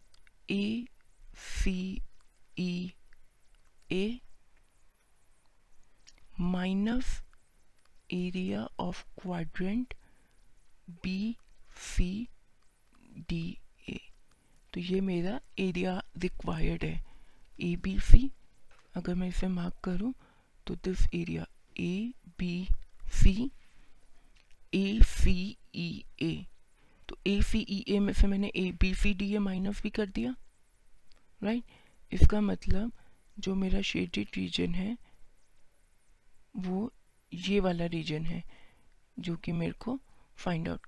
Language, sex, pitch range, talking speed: Hindi, female, 175-205 Hz, 105 wpm